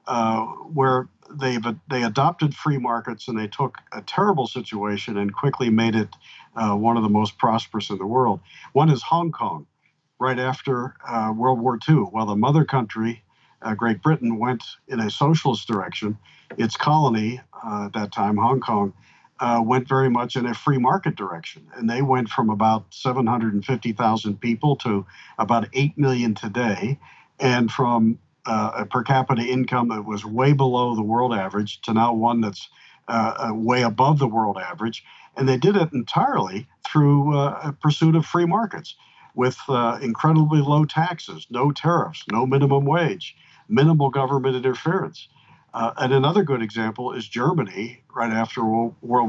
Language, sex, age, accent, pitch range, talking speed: English, male, 50-69, American, 115-140 Hz, 165 wpm